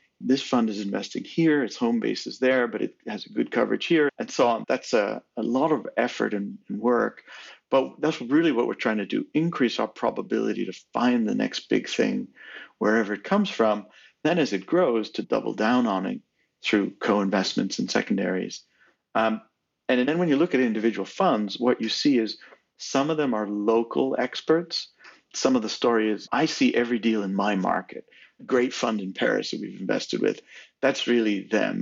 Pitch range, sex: 105-155 Hz, male